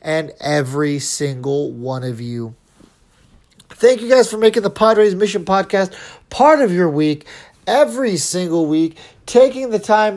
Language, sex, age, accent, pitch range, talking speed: English, male, 30-49, American, 155-210 Hz, 150 wpm